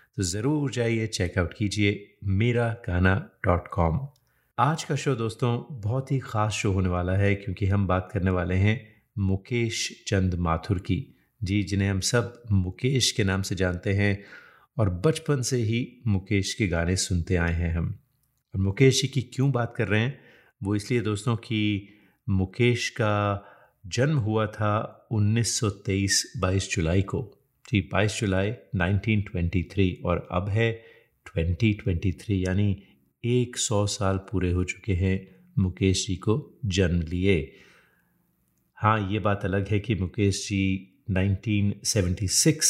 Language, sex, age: Hindi, male, 30-49